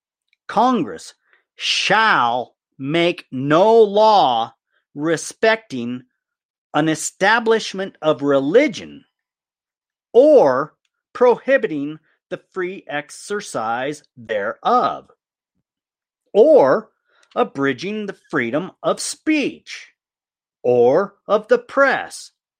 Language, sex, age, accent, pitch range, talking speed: English, male, 50-69, American, 145-245 Hz, 70 wpm